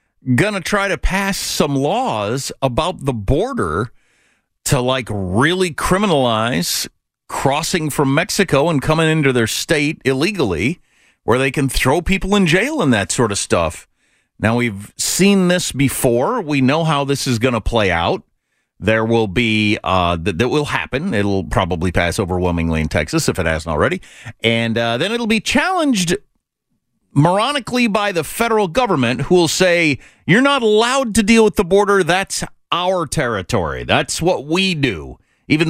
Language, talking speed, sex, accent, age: English, 165 wpm, male, American, 50-69